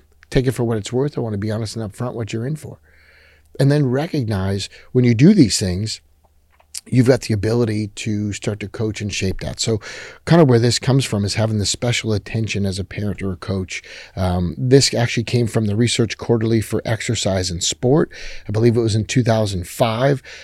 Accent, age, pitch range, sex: American, 30-49, 100-125 Hz, male